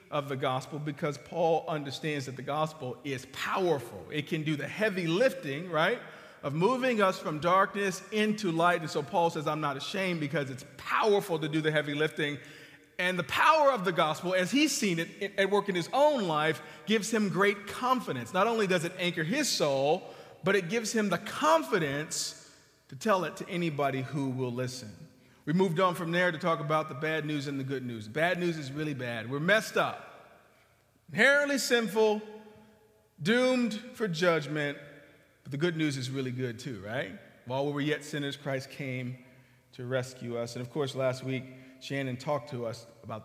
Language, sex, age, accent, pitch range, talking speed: English, male, 40-59, American, 135-185 Hz, 190 wpm